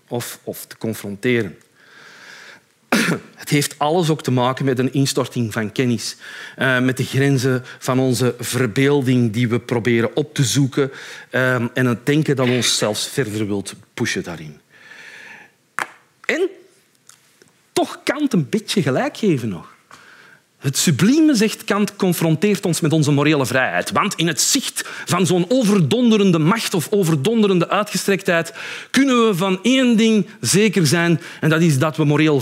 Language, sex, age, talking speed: Dutch, male, 40-59, 145 wpm